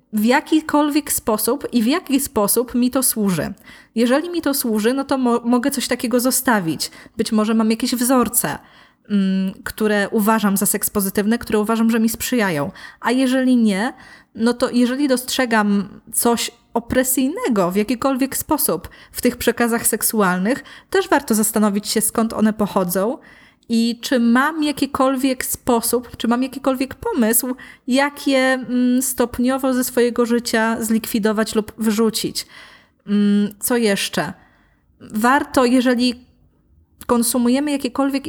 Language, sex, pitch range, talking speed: Polish, female, 215-260 Hz, 125 wpm